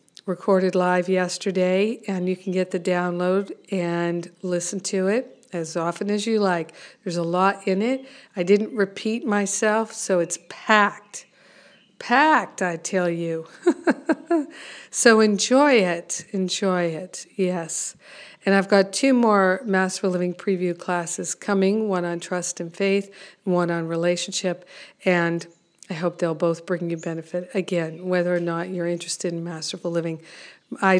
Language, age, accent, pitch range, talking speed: English, 50-69, American, 175-205 Hz, 145 wpm